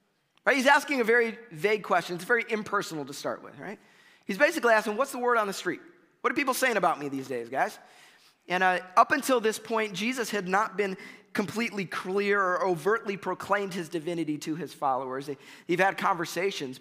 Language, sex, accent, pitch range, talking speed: English, male, American, 170-215 Hz, 195 wpm